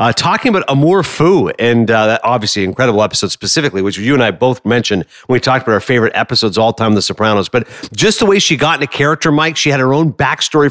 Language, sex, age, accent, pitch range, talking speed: English, male, 40-59, American, 125-165 Hz, 240 wpm